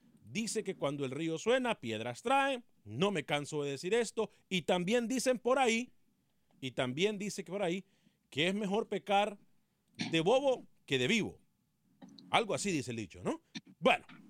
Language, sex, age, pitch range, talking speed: Spanish, male, 40-59, 160-220 Hz, 170 wpm